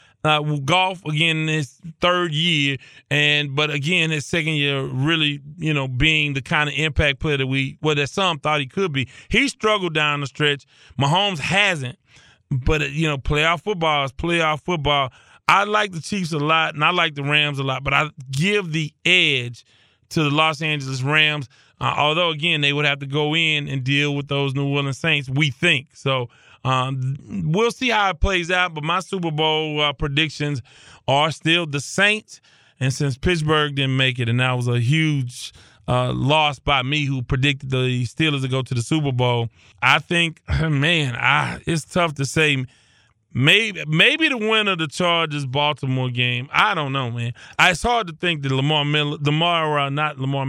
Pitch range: 135-160 Hz